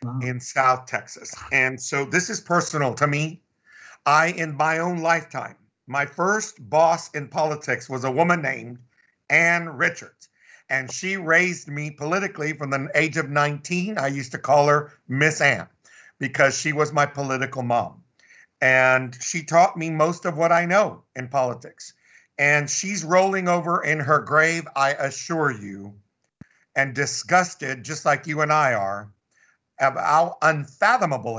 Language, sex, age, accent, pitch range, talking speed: English, male, 50-69, American, 135-170 Hz, 155 wpm